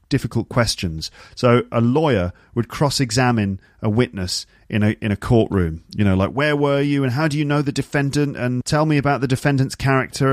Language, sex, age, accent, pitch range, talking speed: English, male, 40-59, British, 105-140 Hz, 200 wpm